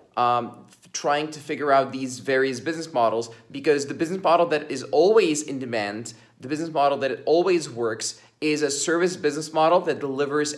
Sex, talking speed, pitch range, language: male, 175 wpm, 130-155 Hz, English